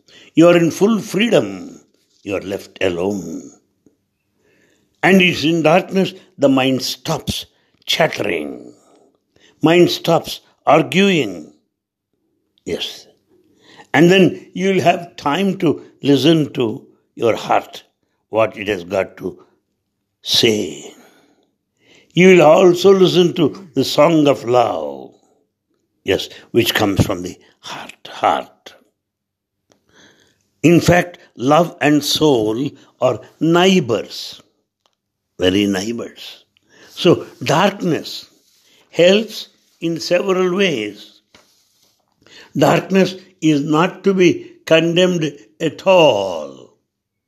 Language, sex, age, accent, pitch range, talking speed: English, male, 60-79, Indian, 145-185 Hz, 100 wpm